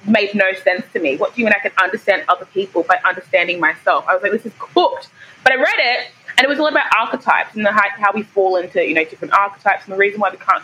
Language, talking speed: English, 280 wpm